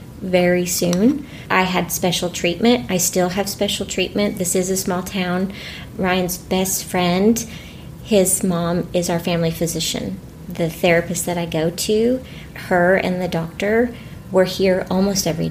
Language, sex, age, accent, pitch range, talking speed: English, female, 30-49, American, 170-200 Hz, 150 wpm